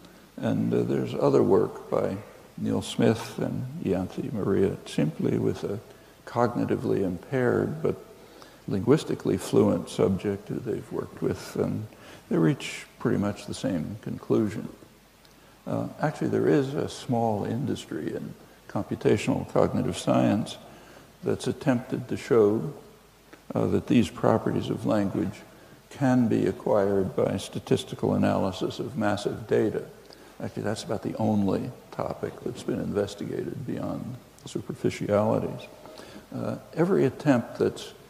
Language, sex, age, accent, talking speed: English, male, 60-79, American, 120 wpm